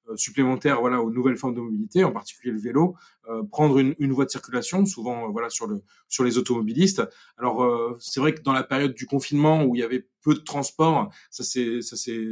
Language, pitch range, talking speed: French, 115-145 Hz, 225 wpm